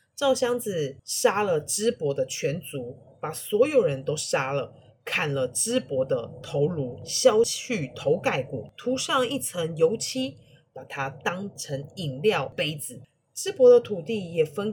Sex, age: female, 30-49